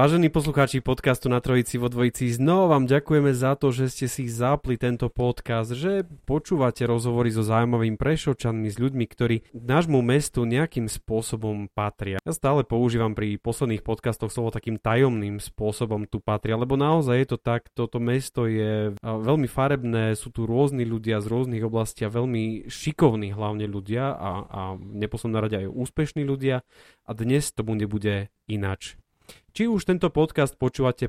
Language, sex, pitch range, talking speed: Slovak, male, 110-130 Hz, 160 wpm